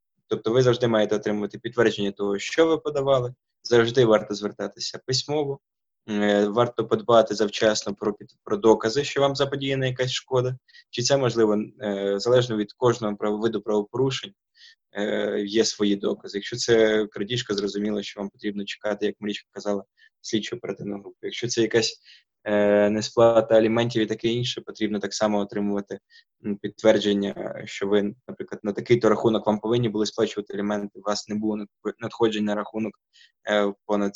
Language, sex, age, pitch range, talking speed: Ukrainian, male, 20-39, 105-120 Hz, 145 wpm